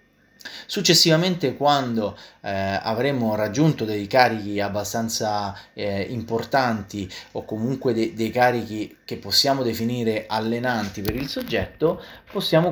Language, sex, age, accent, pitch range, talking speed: Italian, male, 30-49, native, 110-140 Hz, 110 wpm